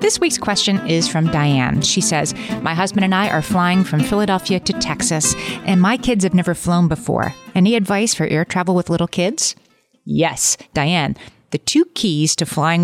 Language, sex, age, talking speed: English, female, 30-49, 185 wpm